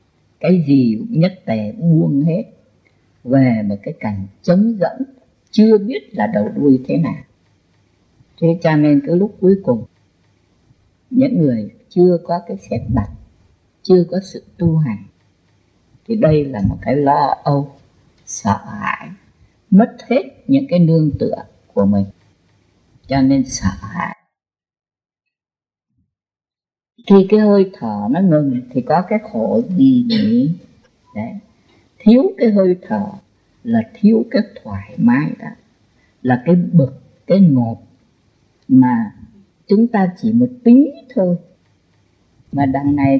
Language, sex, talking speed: Vietnamese, female, 135 wpm